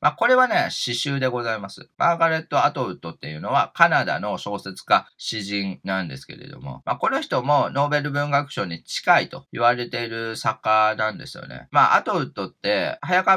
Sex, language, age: male, Japanese, 40-59